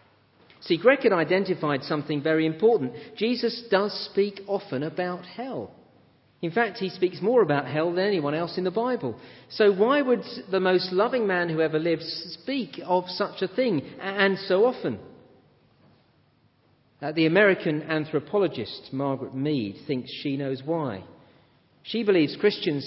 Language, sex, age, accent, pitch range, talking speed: English, male, 40-59, British, 150-200 Hz, 145 wpm